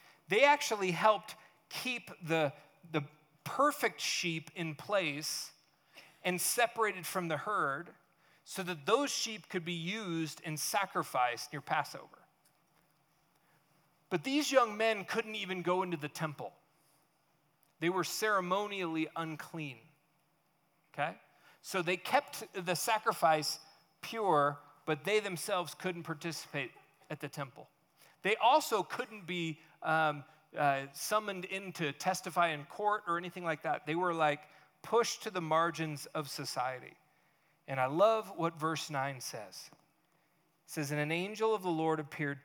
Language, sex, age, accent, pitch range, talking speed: English, male, 40-59, American, 150-185 Hz, 135 wpm